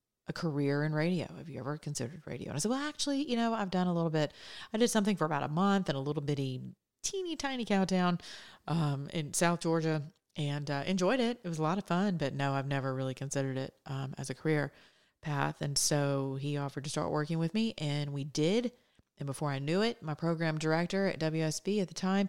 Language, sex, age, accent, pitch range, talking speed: English, female, 30-49, American, 145-185 Hz, 230 wpm